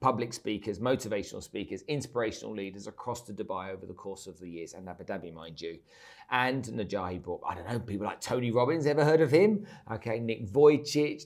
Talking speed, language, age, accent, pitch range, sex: 195 wpm, English, 40-59, British, 105-130 Hz, male